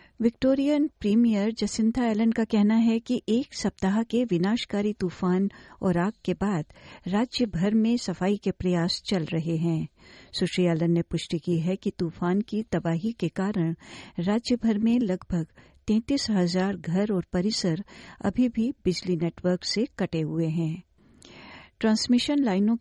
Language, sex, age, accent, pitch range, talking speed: Hindi, female, 50-69, native, 180-225 Hz, 140 wpm